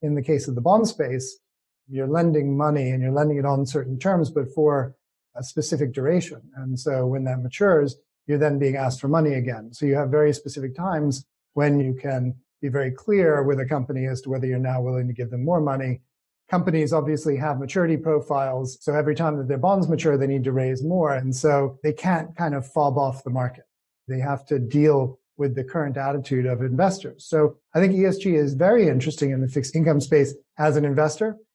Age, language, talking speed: 40-59, English, 215 wpm